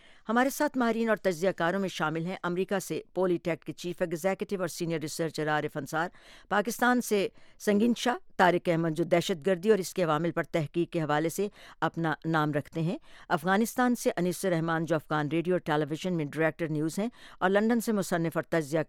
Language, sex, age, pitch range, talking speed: Urdu, female, 60-79, 160-195 Hz, 200 wpm